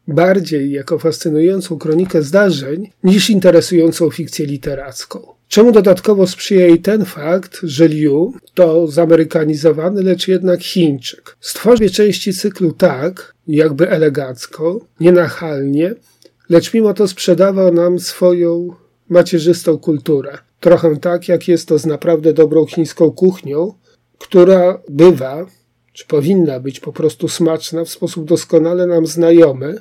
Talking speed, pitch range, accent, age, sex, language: 120 wpm, 155-180 Hz, native, 40-59, male, Polish